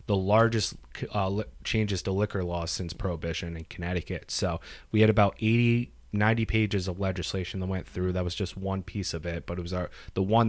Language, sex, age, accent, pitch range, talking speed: English, male, 30-49, American, 90-110 Hz, 210 wpm